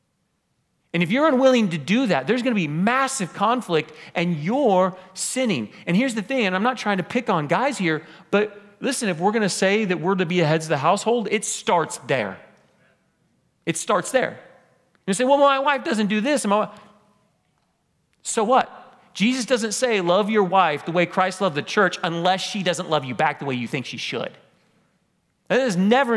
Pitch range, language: 160-210 Hz, English